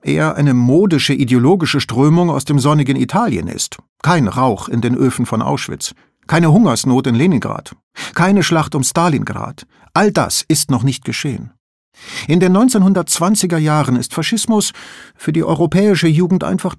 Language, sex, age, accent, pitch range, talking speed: German, male, 50-69, German, 130-170 Hz, 150 wpm